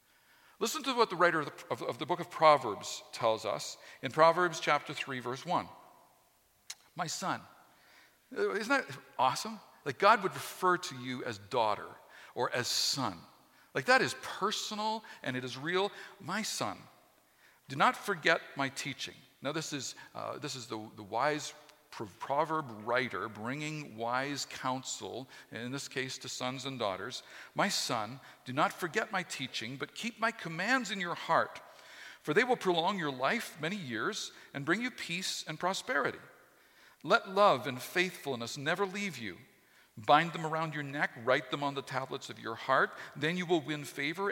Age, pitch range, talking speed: 50-69, 130-185 Hz, 170 wpm